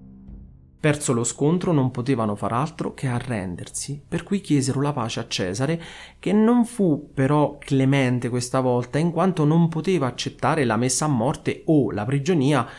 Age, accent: 30-49, native